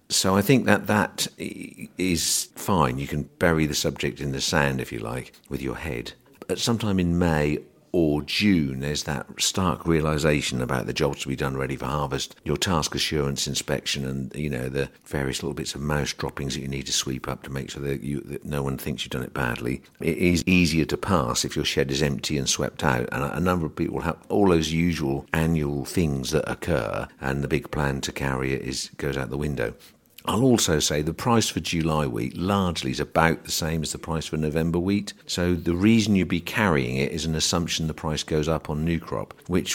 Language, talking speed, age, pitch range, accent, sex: English, 225 wpm, 50-69, 70-85 Hz, British, male